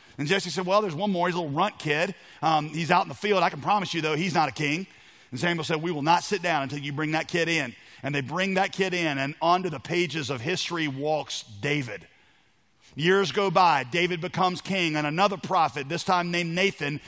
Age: 40-59